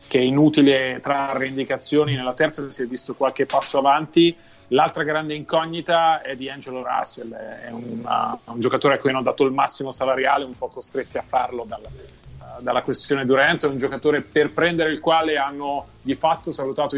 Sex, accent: male, native